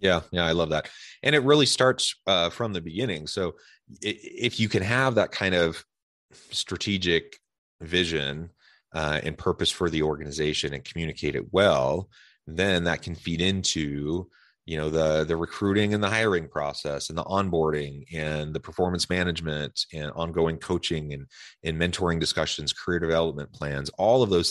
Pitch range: 75-95 Hz